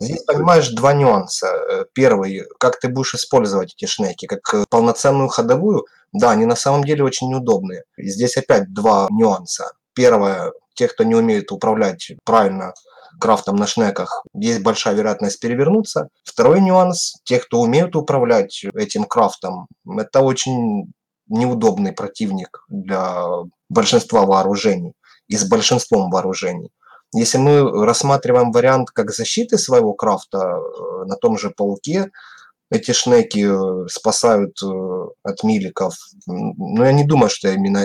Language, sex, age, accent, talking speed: Russian, male, 20-39, native, 130 wpm